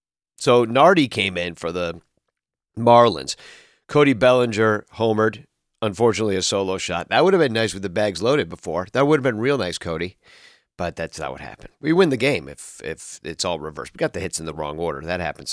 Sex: male